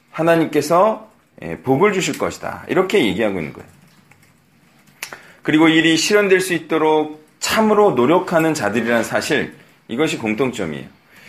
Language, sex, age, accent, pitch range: Korean, male, 40-59, native, 155-210 Hz